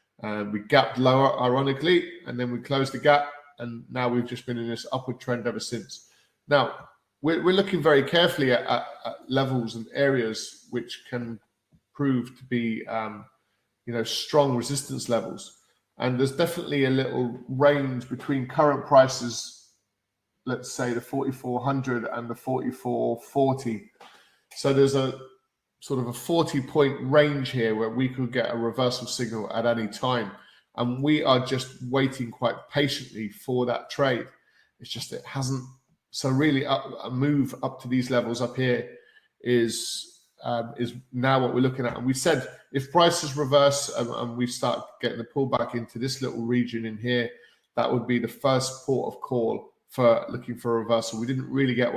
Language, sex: English, male